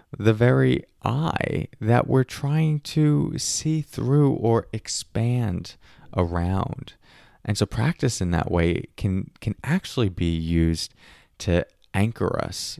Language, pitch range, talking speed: English, 85-115 Hz, 120 wpm